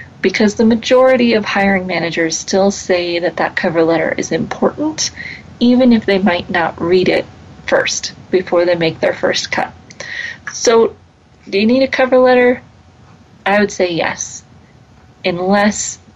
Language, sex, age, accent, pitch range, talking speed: English, female, 30-49, American, 175-225 Hz, 150 wpm